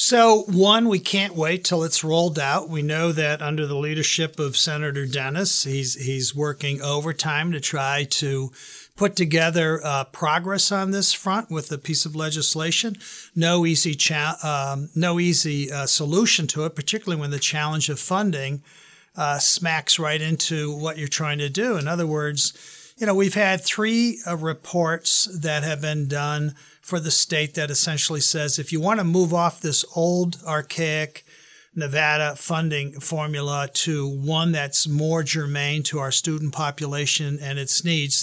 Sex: male